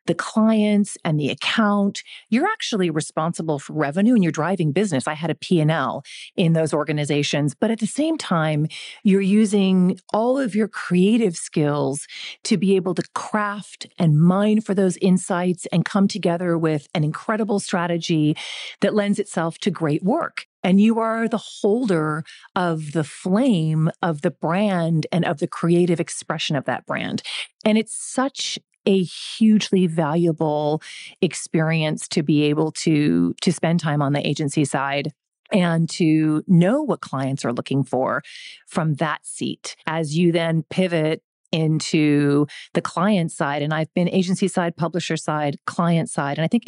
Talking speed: 160 wpm